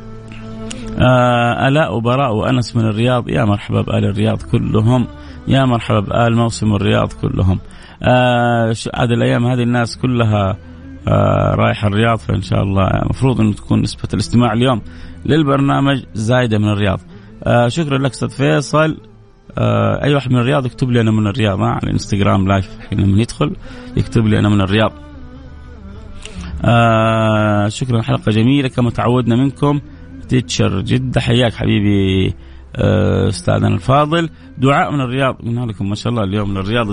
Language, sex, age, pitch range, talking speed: Arabic, male, 30-49, 105-125 Hz, 140 wpm